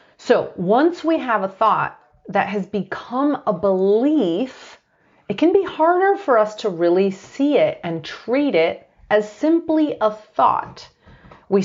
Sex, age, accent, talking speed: female, 30-49, American, 150 wpm